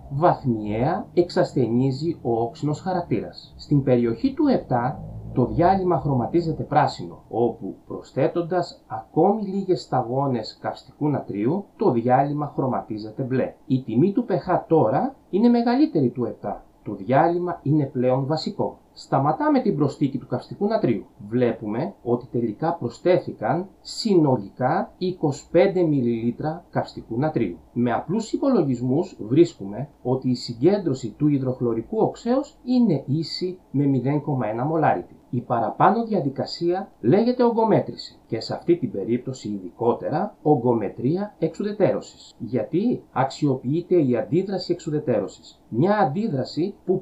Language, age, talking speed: Greek, 30-49, 115 wpm